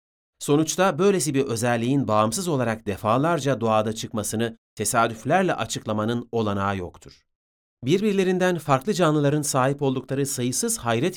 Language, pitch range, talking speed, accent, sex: Turkish, 105-155 Hz, 105 wpm, native, male